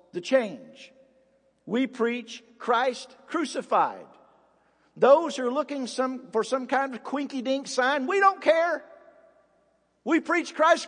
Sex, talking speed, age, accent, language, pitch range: male, 130 wpm, 50-69, American, English, 210-265 Hz